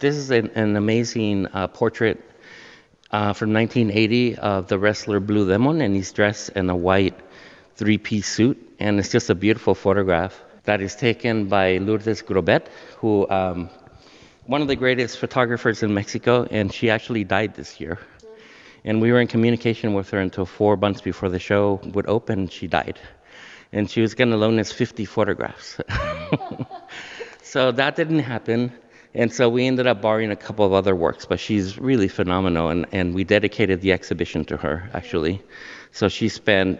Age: 50-69